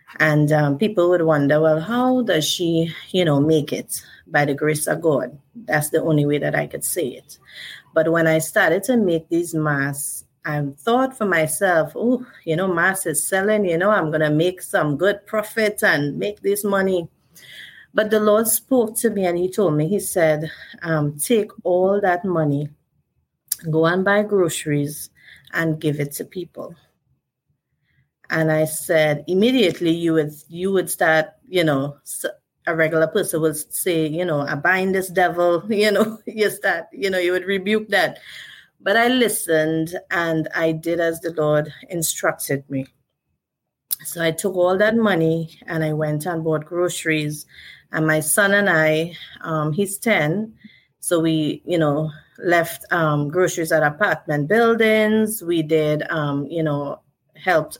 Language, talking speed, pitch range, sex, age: English, 170 wpm, 155-200 Hz, female, 30-49